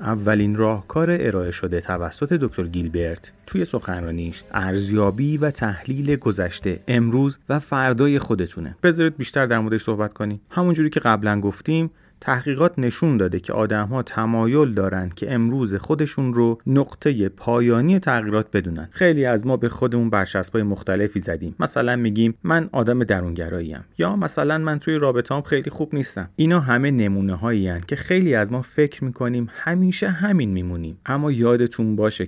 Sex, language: male, Persian